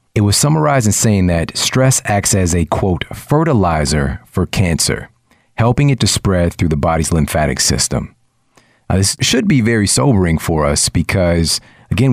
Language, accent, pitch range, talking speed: English, American, 85-110 Hz, 160 wpm